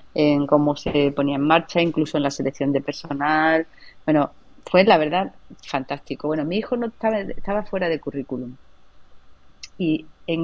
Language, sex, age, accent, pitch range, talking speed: Spanish, female, 30-49, Spanish, 145-180 Hz, 160 wpm